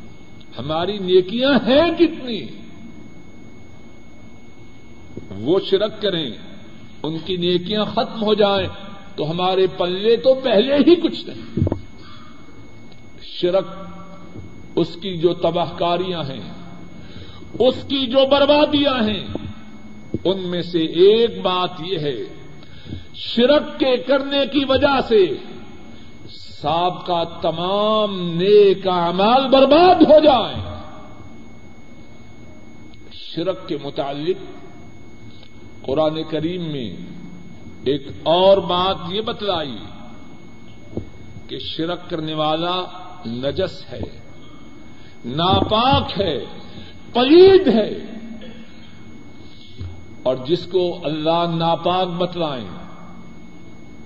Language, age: Urdu, 50-69